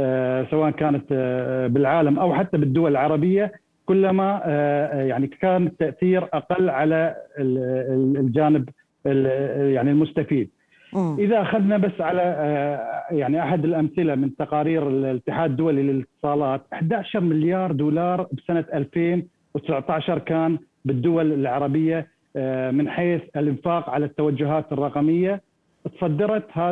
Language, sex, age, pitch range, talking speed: Arabic, male, 40-59, 140-180 Hz, 95 wpm